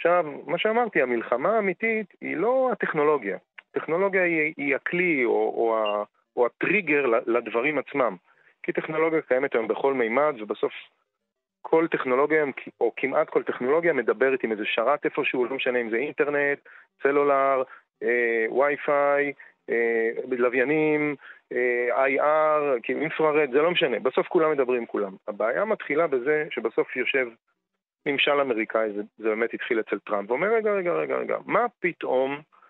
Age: 30-49